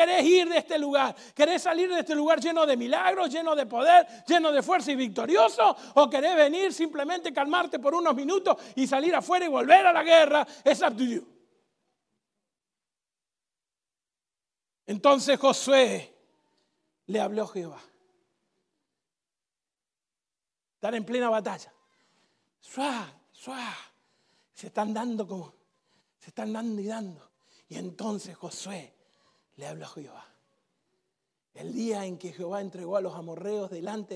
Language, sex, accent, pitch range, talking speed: Spanish, male, Argentinian, 220-315 Hz, 140 wpm